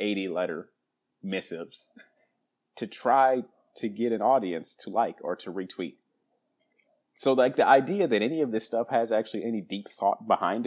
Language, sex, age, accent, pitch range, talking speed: English, male, 30-49, American, 105-130 Hz, 165 wpm